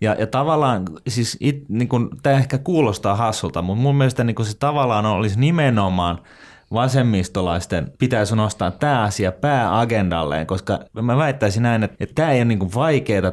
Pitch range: 95-125 Hz